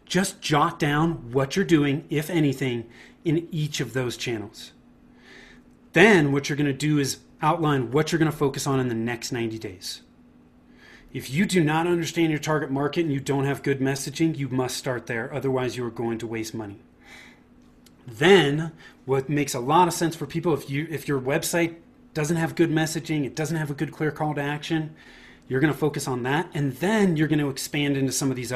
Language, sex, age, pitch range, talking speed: English, male, 30-49, 130-165 Hz, 210 wpm